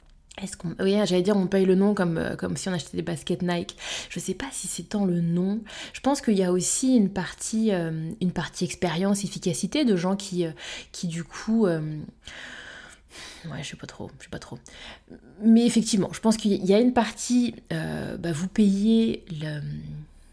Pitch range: 170-210 Hz